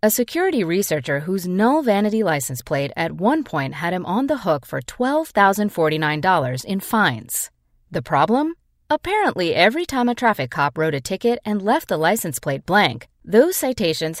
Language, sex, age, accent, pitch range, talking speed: English, female, 30-49, American, 155-255 Hz, 165 wpm